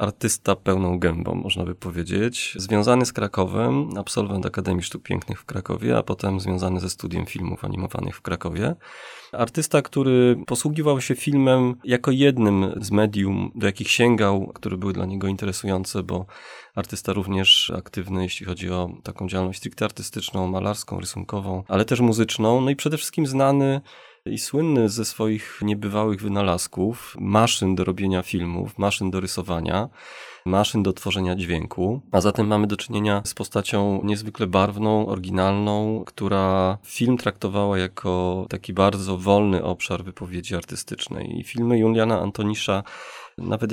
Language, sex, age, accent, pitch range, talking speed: Polish, male, 30-49, native, 95-115 Hz, 145 wpm